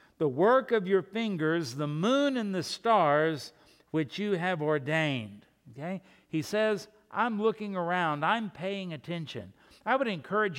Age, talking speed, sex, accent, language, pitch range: 60-79, 145 wpm, male, American, English, 160-210 Hz